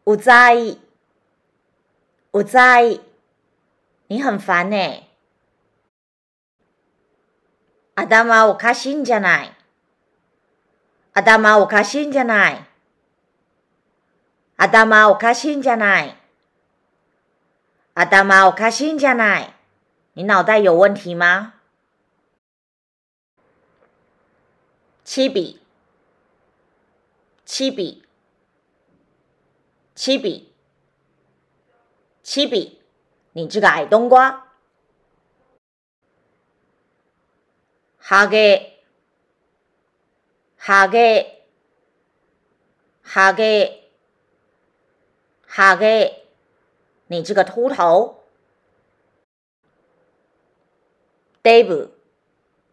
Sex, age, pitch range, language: female, 40-59, 195-260 Hz, Japanese